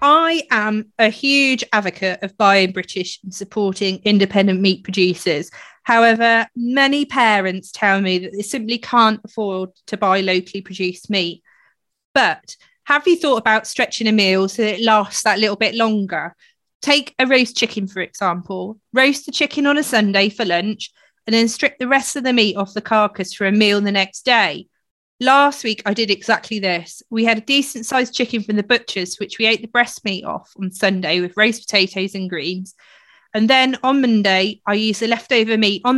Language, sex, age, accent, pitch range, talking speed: English, female, 30-49, British, 195-245 Hz, 190 wpm